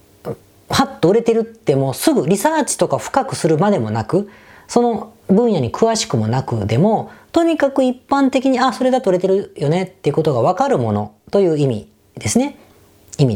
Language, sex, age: Japanese, female, 40-59